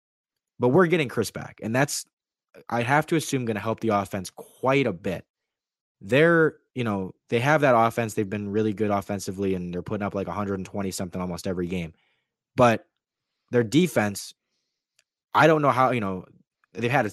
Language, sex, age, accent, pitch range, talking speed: English, male, 20-39, American, 95-120 Hz, 180 wpm